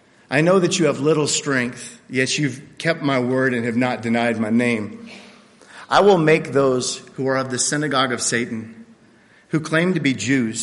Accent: American